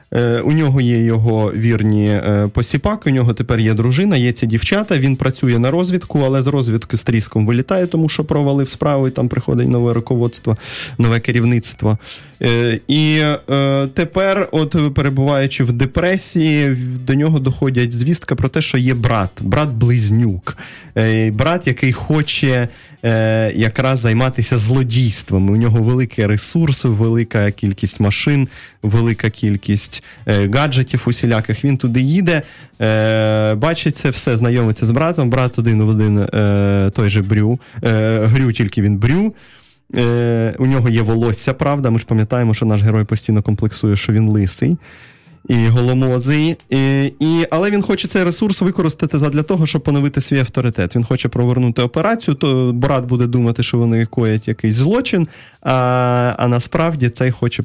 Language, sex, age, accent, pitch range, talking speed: Russian, male, 20-39, native, 115-145 Hz, 145 wpm